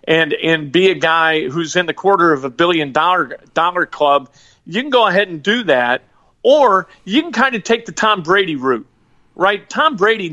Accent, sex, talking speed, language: American, male, 205 wpm, English